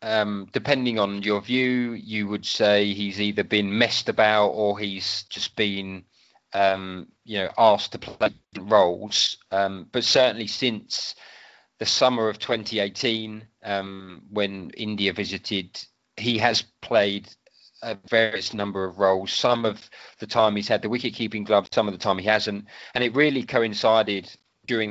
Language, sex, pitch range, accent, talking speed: Telugu, male, 95-110 Hz, British, 155 wpm